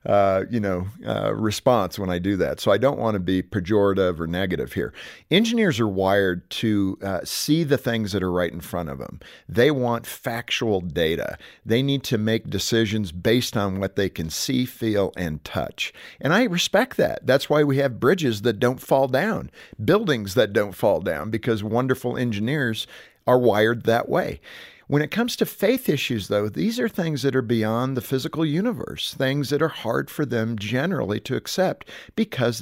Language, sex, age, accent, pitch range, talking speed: English, male, 50-69, American, 100-135 Hz, 190 wpm